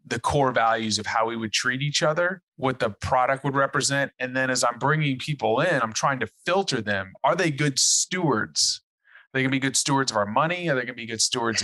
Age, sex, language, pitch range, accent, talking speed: 30-49, male, English, 120-155 Hz, American, 235 wpm